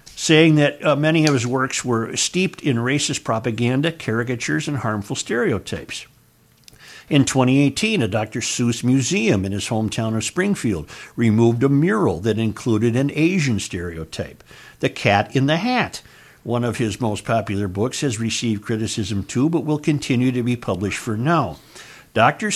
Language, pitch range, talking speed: English, 110-155 Hz, 155 wpm